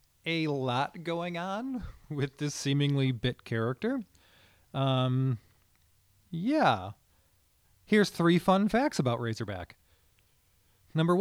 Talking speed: 95 wpm